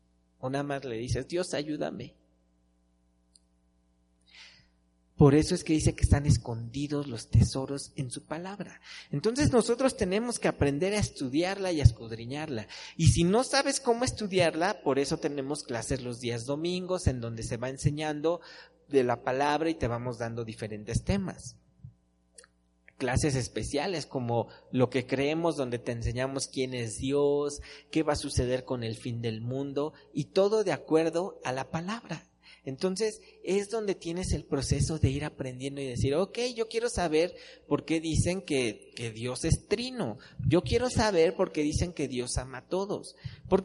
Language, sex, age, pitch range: Spanish, male, 40-59, 120-170 Hz